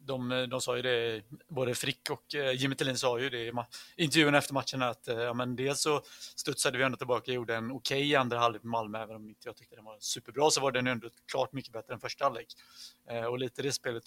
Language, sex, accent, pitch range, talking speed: Swedish, male, native, 120-135 Hz, 240 wpm